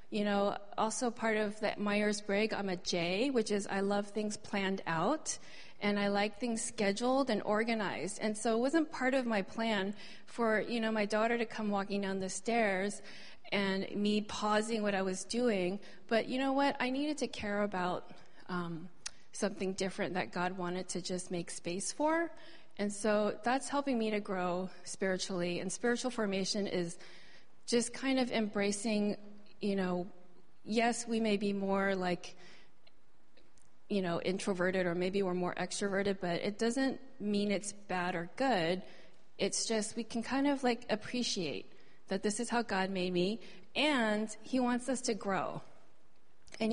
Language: English